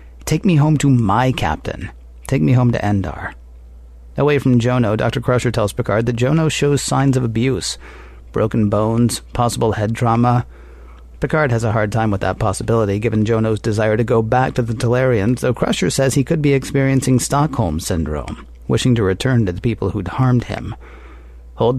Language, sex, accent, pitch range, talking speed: English, male, American, 95-130 Hz, 180 wpm